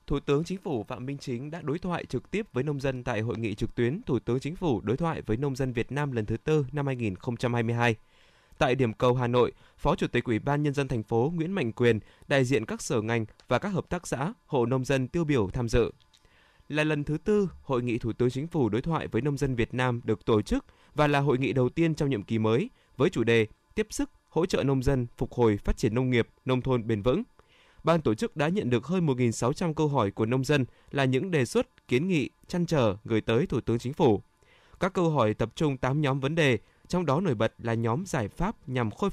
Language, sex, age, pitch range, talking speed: Vietnamese, male, 20-39, 115-155 Hz, 255 wpm